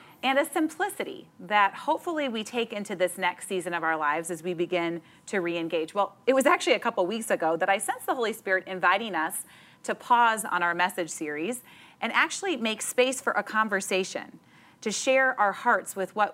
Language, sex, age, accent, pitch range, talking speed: English, female, 30-49, American, 175-220 Hz, 200 wpm